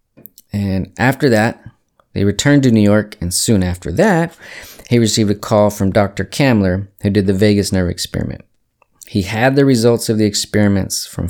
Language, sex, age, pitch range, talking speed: English, male, 30-49, 95-120 Hz, 175 wpm